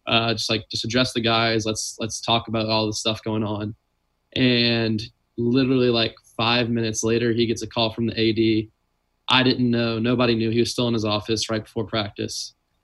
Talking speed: 200 wpm